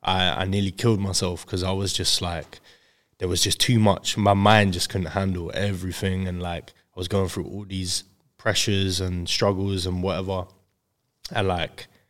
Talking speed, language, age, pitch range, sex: 180 wpm, English, 20-39, 95-110 Hz, male